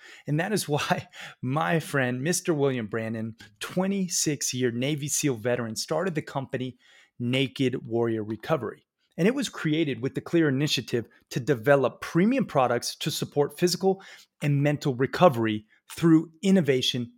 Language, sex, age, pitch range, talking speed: English, male, 30-49, 130-170 Hz, 140 wpm